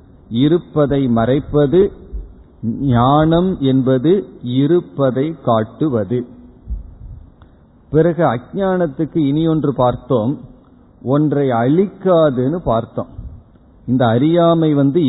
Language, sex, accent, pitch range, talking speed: Tamil, male, native, 120-165 Hz, 65 wpm